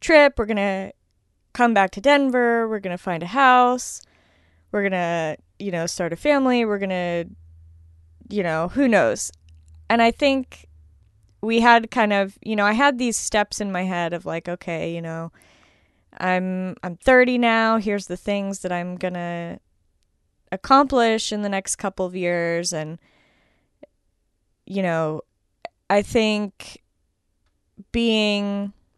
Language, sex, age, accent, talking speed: English, female, 20-39, American, 155 wpm